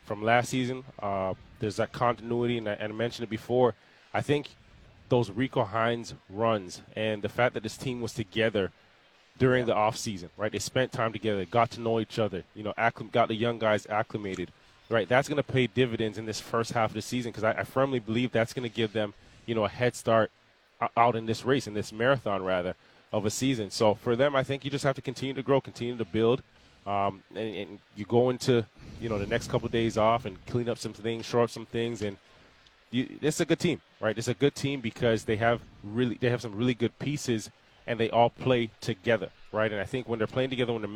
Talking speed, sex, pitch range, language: 235 wpm, male, 105-125 Hz, English